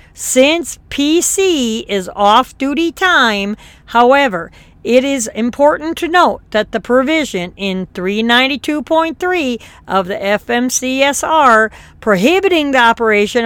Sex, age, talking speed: female, 50-69, 100 wpm